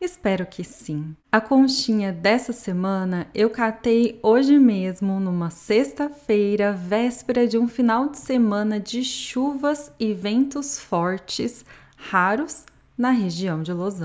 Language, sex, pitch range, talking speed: Portuguese, female, 190-255 Hz, 125 wpm